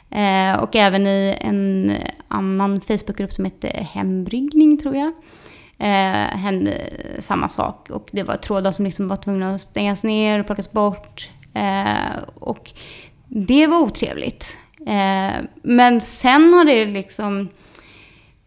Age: 20-39